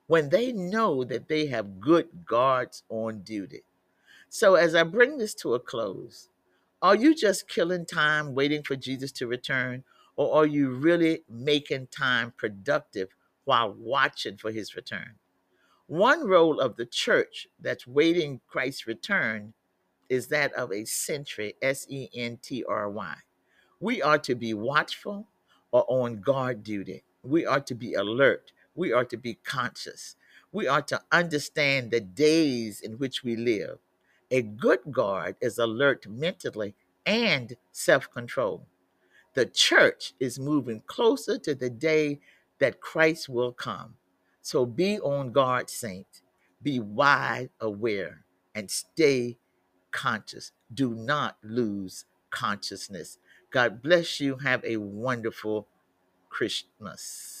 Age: 50-69